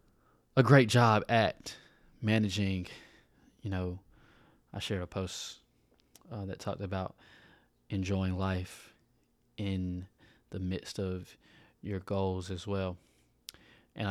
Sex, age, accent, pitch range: male, 20-39, American, 95-115 Hz